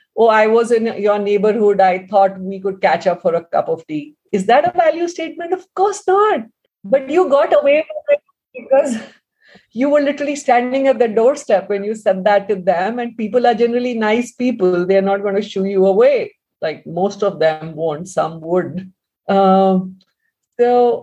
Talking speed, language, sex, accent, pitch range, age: 190 wpm, English, female, Indian, 195-255 Hz, 50-69